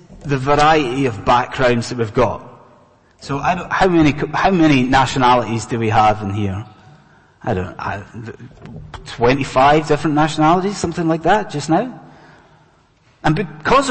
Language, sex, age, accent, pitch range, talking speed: English, male, 30-49, British, 130-175 Hz, 140 wpm